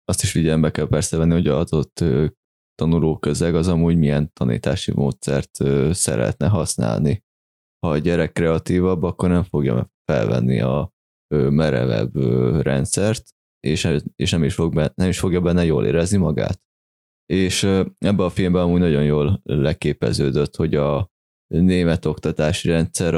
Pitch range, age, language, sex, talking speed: 75-90 Hz, 20-39, Hungarian, male, 135 wpm